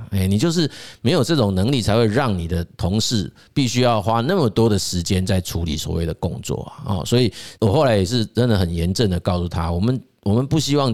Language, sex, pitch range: Chinese, male, 95-130 Hz